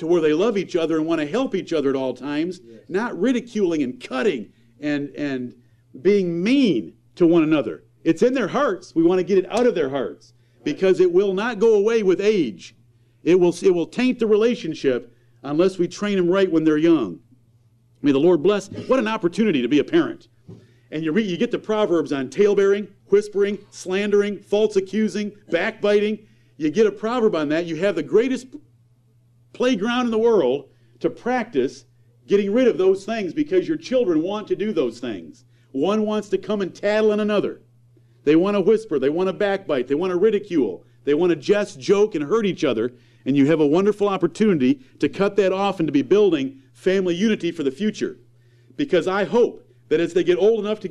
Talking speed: 205 wpm